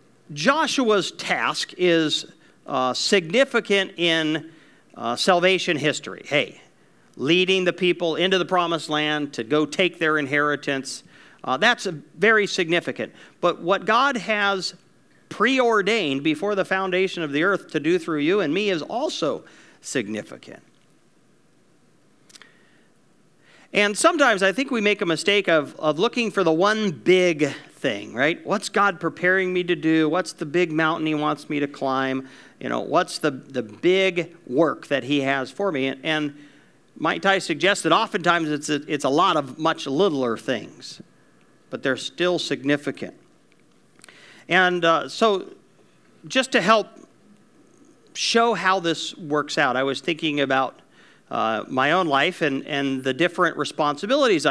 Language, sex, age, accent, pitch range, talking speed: English, male, 50-69, American, 150-195 Hz, 150 wpm